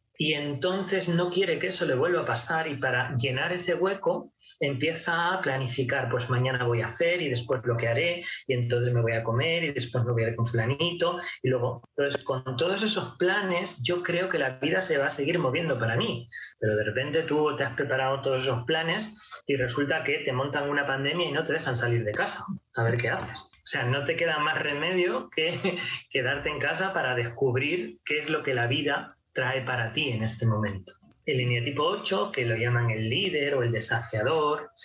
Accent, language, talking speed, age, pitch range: Spanish, Spanish, 215 wpm, 30-49, 125-170 Hz